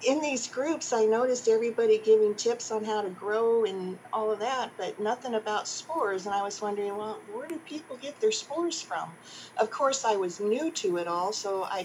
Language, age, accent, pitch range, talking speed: English, 50-69, American, 185-250 Hz, 215 wpm